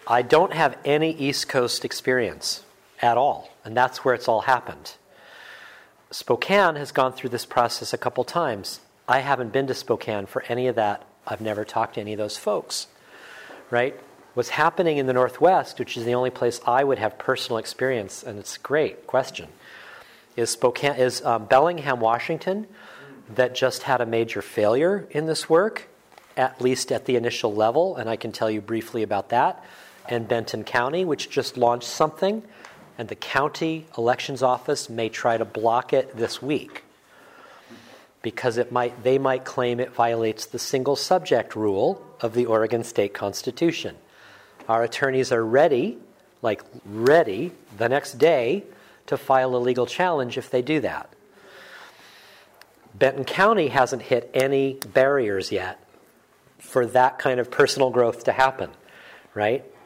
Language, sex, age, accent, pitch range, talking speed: English, male, 40-59, American, 115-135 Hz, 160 wpm